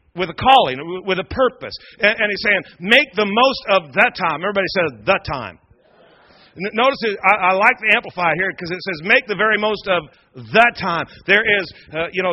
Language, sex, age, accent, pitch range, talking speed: English, male, 40-59, American, 160-195 Hz, 205 wpm